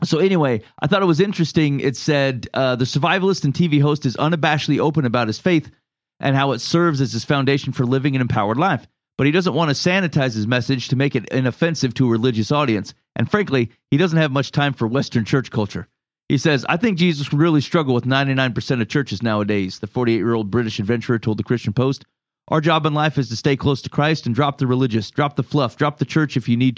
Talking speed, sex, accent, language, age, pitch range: 230 wpm, male, American, English, 40-59, 125-150 Hz